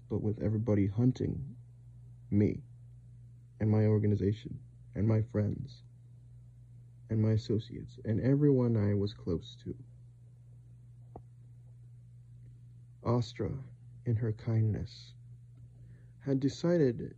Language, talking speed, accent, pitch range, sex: English, 90 wpm, American, 115-120 Hz, male